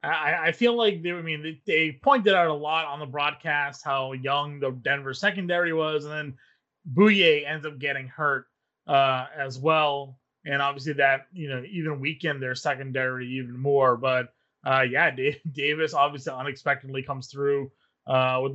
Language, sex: English, male